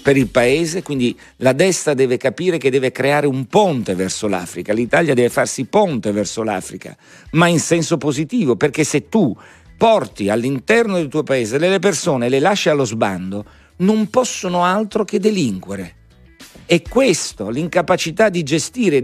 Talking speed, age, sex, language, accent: 160 wpm, 50-69, male, Italian, native